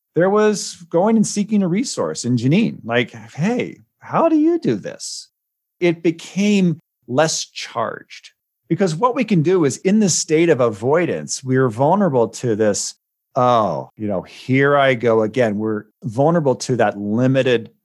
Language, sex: English, male